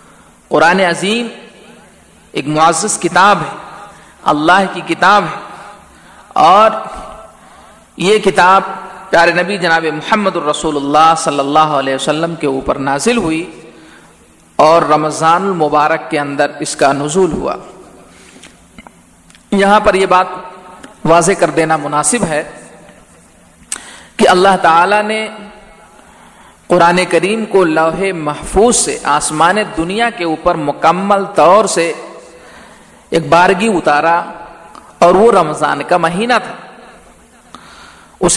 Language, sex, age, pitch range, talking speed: Urdu, male, 40-59, 155-200 Hz, 115 wpm